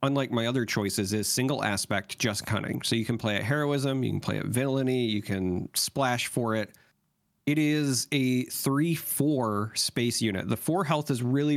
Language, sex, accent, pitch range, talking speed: English, male, American, 110-140 Hz, 185 wpm